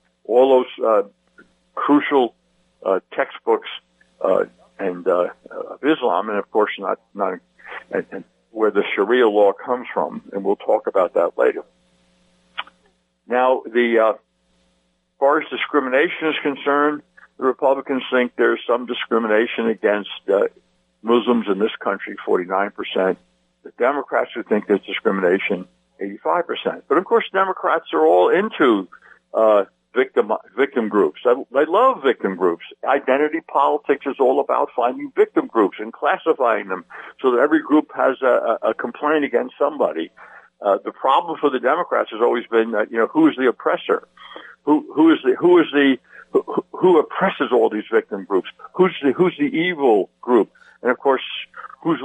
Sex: male